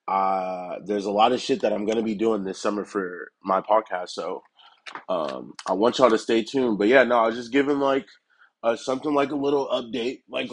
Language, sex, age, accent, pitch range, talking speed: English, male, 20-39, American, 100-115 Hz, 230 wpm